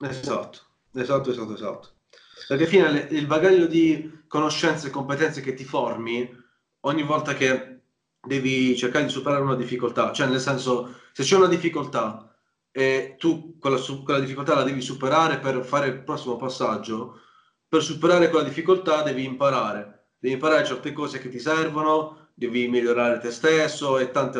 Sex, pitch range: male, 130-165 Hz